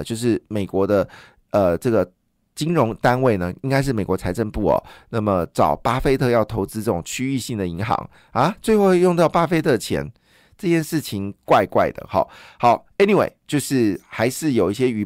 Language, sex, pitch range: Chinese, male, 105-145 Hz